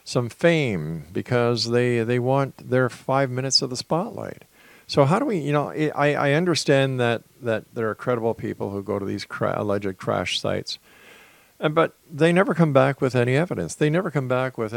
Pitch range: 115-145 Hz